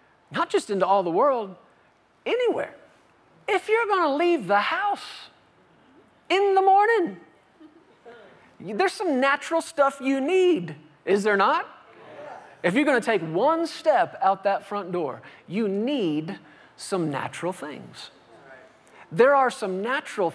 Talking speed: 135 wpm